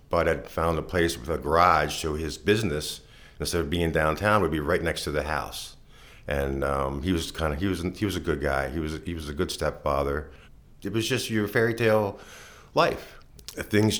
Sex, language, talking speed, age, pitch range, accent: male, English, 210 wpm, 50-69, 70-90 Hz, American